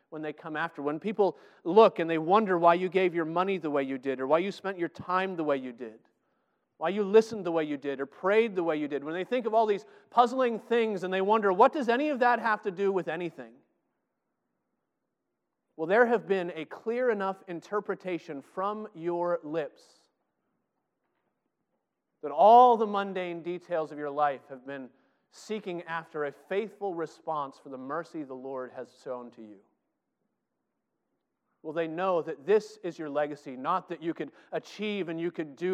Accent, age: American, 30-49